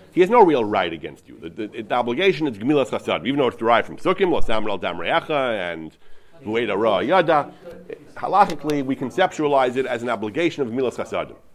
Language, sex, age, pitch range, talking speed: English, male, 40-59, 110-165 Hz, 190 wpm